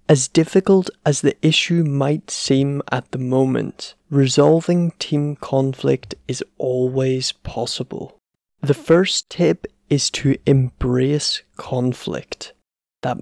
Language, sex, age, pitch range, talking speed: English, male, 20-39, 125-150 Hz, 110 wpm